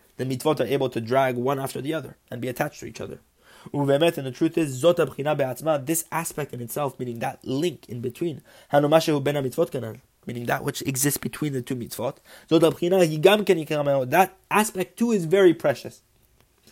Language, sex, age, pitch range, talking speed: English, male, 20-39, 120-150 Hz, 155 wpm